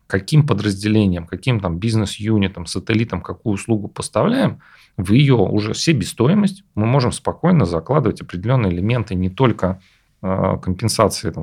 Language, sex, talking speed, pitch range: Russian, male, 120 wpm, 95-120 Hz